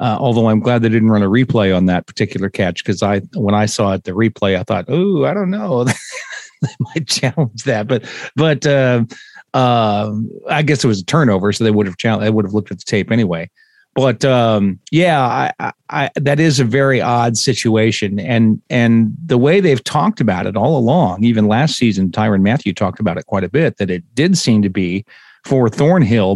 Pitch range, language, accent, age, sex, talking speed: 105-140 Hz, English, American, 40-59, male, 215 wpm